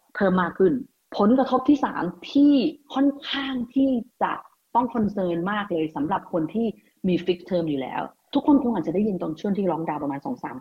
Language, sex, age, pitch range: Thai, female, 30-49, 165-245 Hz